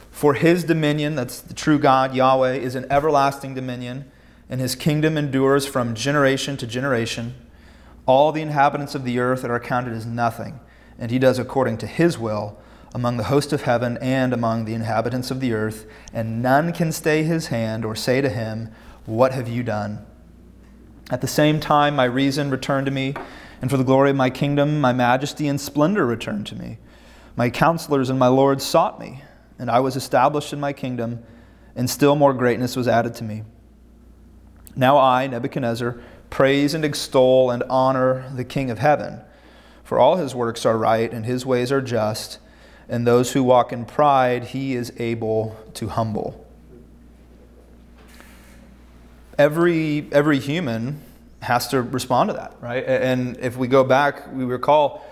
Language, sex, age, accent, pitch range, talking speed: English, male, 30-49, American, 115-140 Hz, 175 wpm